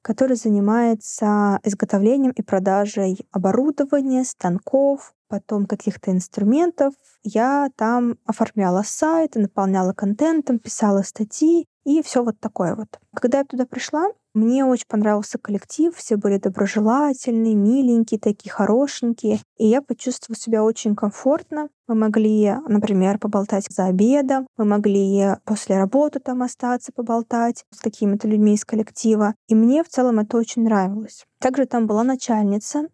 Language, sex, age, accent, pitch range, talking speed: Russian, female, 20-39, native, 205-255 Hz, 135 wpm